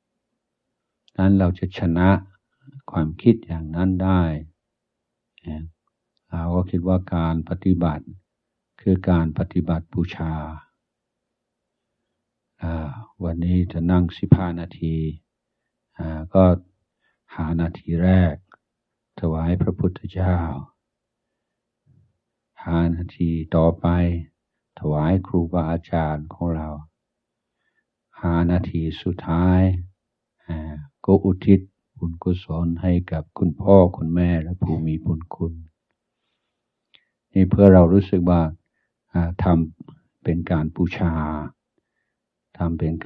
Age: 60-79